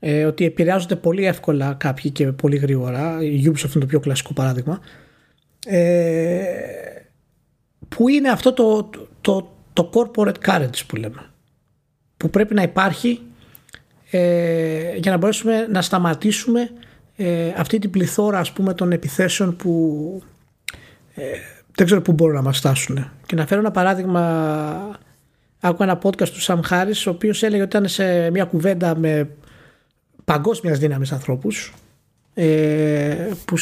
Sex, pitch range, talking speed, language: male, 150-200 Hz, 130 wpm, Greek